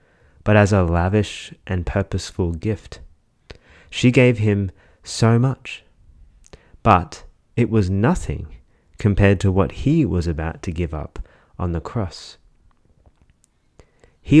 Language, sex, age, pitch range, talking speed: English, male, 30-49, 80-105 Hz, 120 wpm